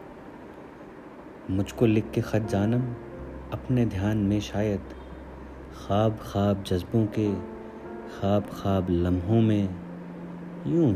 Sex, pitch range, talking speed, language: male, 70-110 Hz, 100 wpm, Hindi